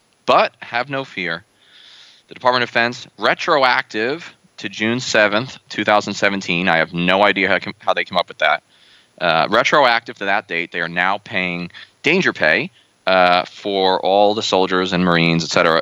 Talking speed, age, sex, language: 165 wpm, 20-39, male, English